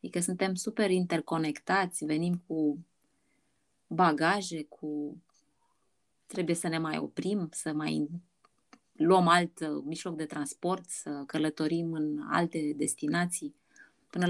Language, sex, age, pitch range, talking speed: Romanian, female, 20-39, 160-205 Hz, 110 wpm